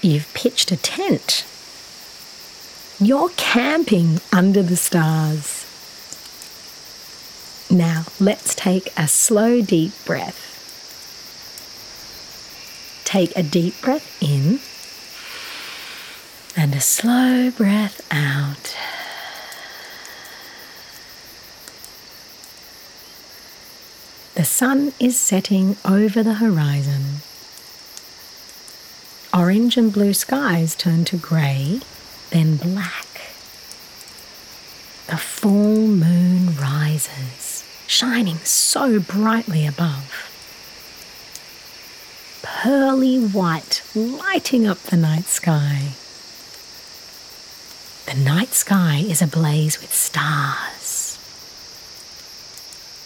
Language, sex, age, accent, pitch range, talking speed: English, female, 40-59, Australian, 155-230 Hz, 70 wpm